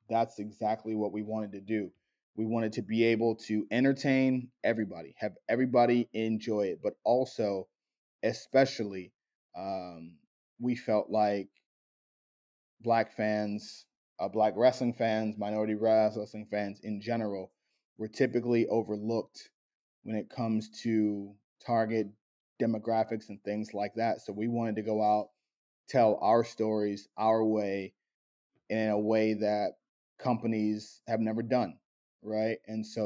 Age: 20-39